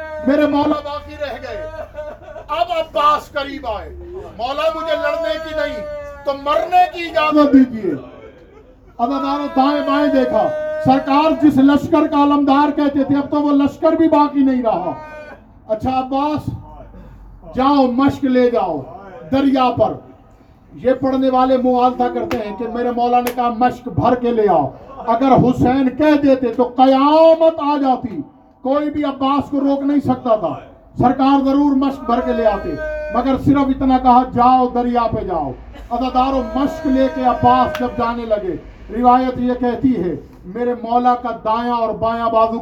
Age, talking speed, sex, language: 50-69, 160 wpm, male, Urdu